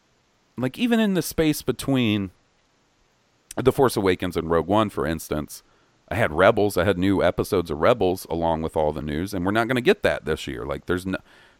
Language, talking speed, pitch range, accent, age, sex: English, 200 wpm, 85-135 Hz, American, 40-59, male